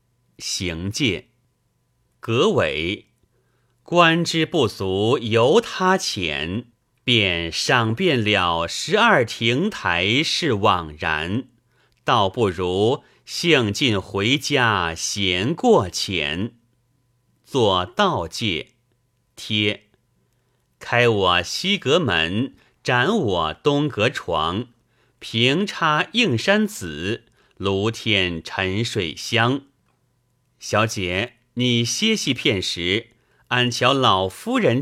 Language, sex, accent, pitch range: Chinese, male, native, 100-130 Hz